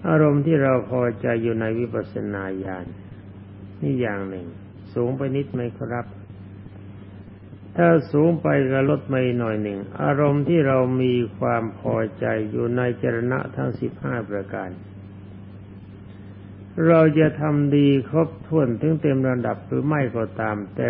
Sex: male